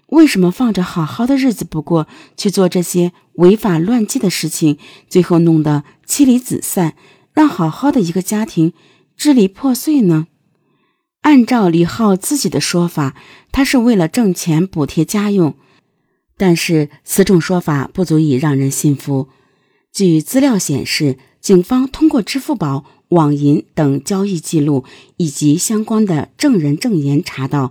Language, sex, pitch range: Chinese, female, 145-215 Hz